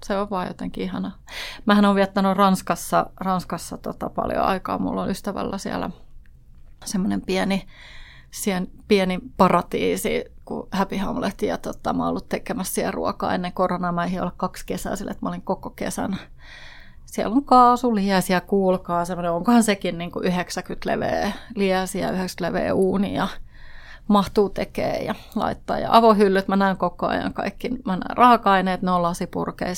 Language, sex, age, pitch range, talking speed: Finnish, female, 30-49, 175-220 Hz, 150 wpm